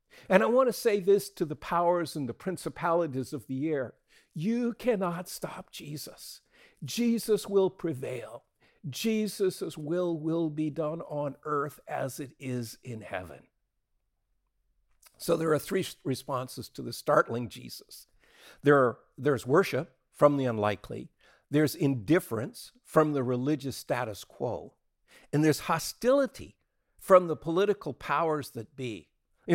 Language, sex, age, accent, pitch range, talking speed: English, male, 50-69, American, 135-165 Hz, 130 wpm